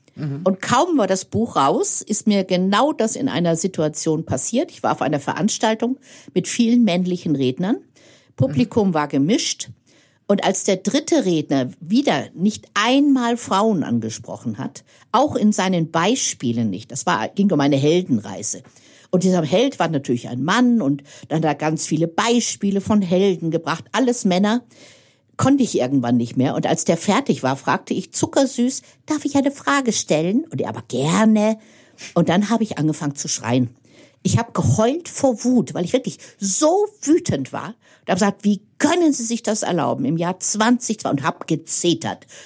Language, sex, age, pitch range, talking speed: German, female, 50-69, 150-230 Hz, 170 wpm